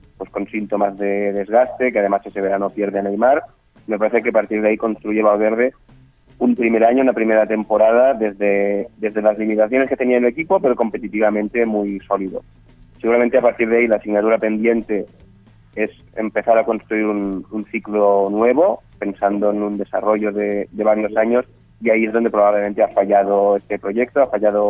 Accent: Spanish